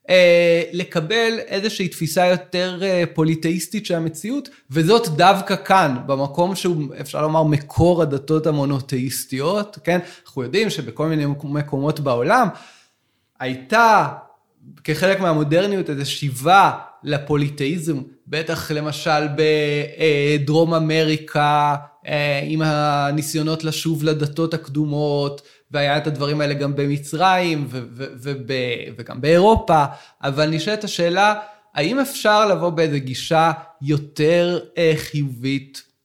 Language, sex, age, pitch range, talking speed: Hebrew, male, 20-39, 145-180 Hz, 105 wpm